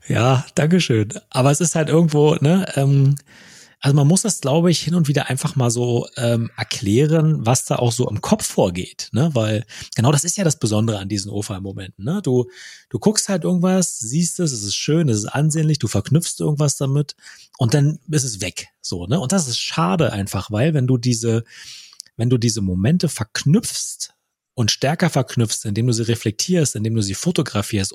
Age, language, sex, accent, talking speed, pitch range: 30-49, German, male, German, 195 wpm, 115-155 Hz